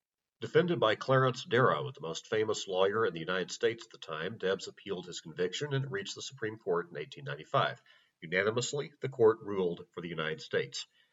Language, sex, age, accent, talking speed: English, male, 40-59, American, 185 wpm